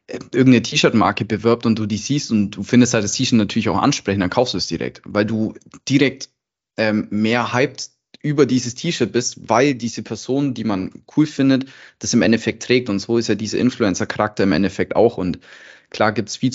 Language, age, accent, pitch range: German, 20-39, German, 100-120 Hz